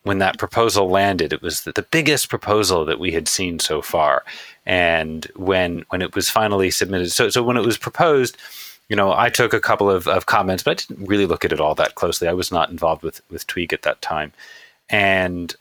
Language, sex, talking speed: English, male, 225 wpm